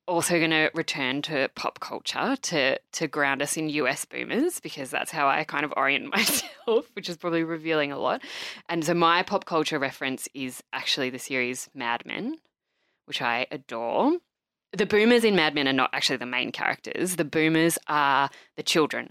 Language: English